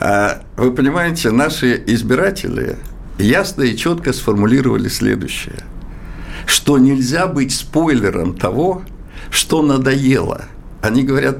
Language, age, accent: Russian, 60-79, native